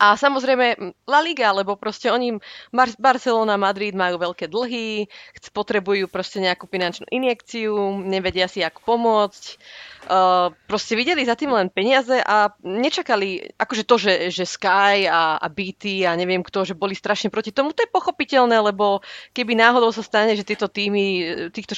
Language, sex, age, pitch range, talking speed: Slovak, female, 30-49, 190-230 Hz, 170 wpm